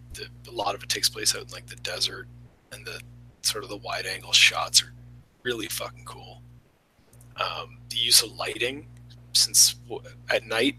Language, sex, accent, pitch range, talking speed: English, male, American, 115-120 Hz, 170 wpm